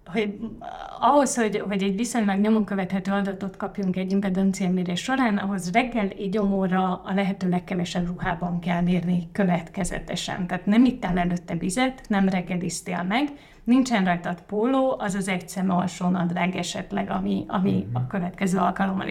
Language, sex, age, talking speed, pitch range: Hungarian, female, 30-49, 150 wpm, 180-210 Hz